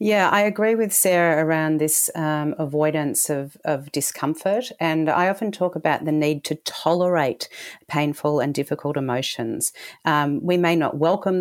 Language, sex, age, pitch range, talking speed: English, female, 40-59, 150-175 Hz, 160 wpm